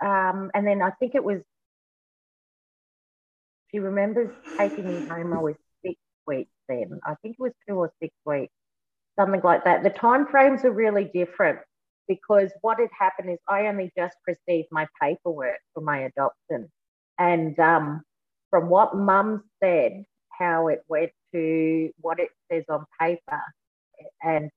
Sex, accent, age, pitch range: female, Australian, 30-49, 150-185 Hz